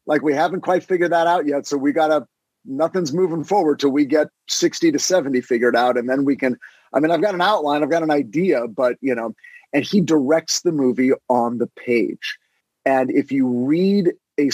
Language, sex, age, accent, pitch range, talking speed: English, male, 40-59, American, 130-170 Hz, 220 wpm